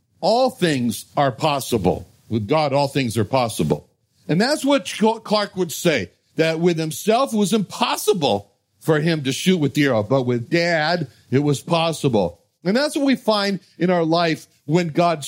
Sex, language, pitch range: male, English, 135-185 Hz